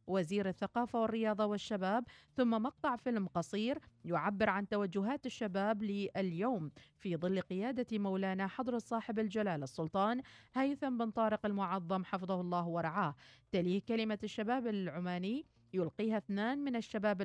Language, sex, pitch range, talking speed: Arabic, female, 180-230 Hz, 125 wpm